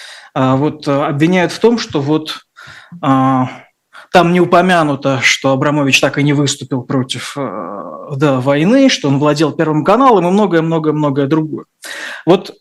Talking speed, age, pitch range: 125 wpm, 20-39, 135-165 Hz